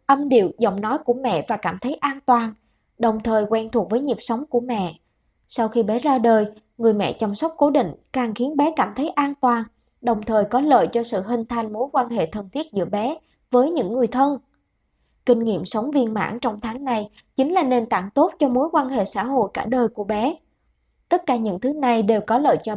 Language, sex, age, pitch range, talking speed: Vietnamese, male, 20-39, 225-270 Hz, 235 wpm